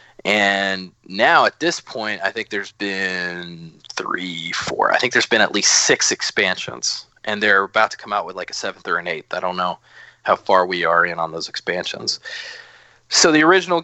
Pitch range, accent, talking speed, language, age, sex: 100-135 Hz, American, 200 wpm, English, 20-39, male